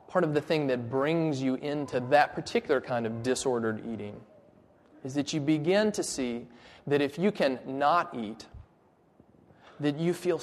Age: 30-49